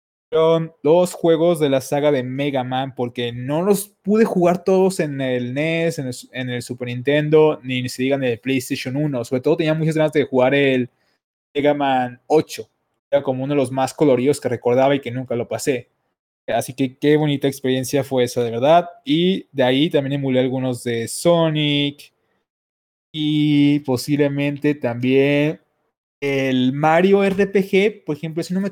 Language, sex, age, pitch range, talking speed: Spanish, male, 20-39, 130-165 Hz, 170 wpm